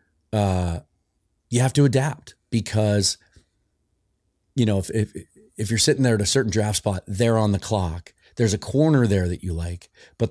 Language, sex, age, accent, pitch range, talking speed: English, male, 30-49, American, 90-115 Hz, 180 wpm